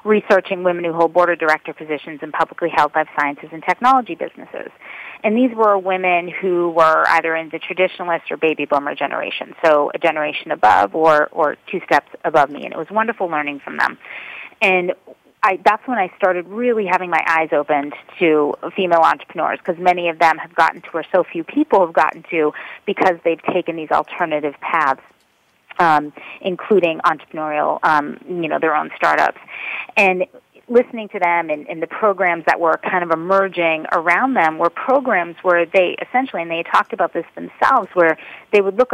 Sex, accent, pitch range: female, American, 160-195 Hz